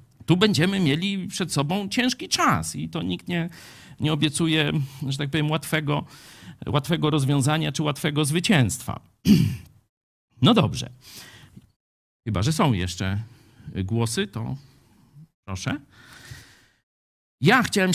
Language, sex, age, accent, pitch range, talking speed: Polish, male, 50-69, native, 115-155 Hz, 110 wpm